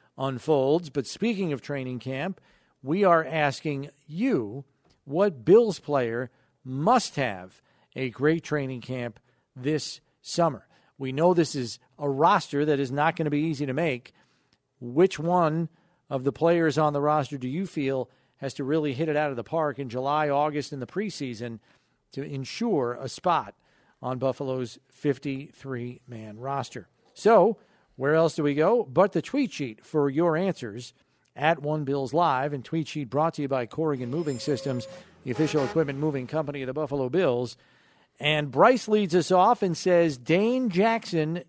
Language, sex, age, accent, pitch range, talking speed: English, male, 40-59, American, 135-165 Hz, 170 wpm